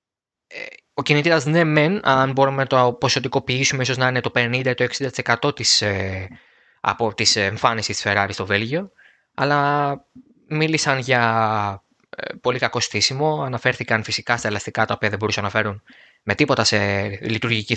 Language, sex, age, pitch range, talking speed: Greek, male, 20-39, 105-150 Hz, 145 wpm